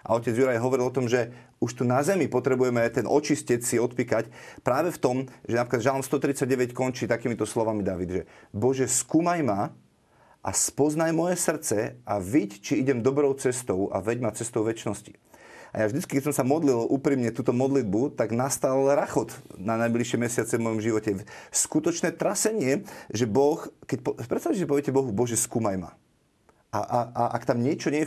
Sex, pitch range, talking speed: male, 115-135 Hz, 180 wpm